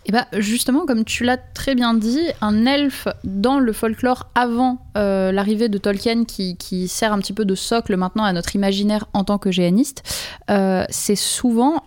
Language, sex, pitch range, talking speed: French, female, 200-255 Hz, 190 wpm